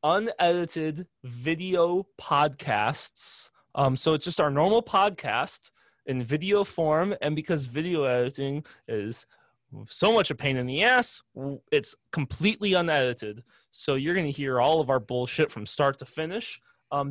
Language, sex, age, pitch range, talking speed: English, male, 20-39, 125-165 Hz, 145 wpm